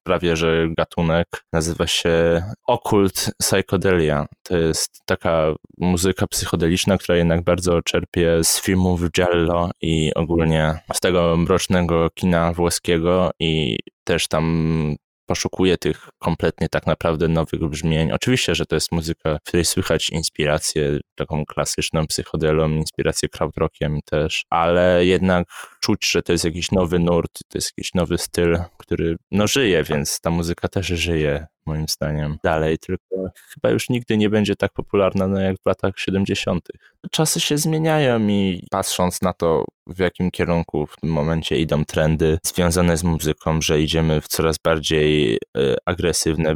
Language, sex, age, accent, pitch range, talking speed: Polish, male, 10-29, native, 80-90 Hz, 145 wpm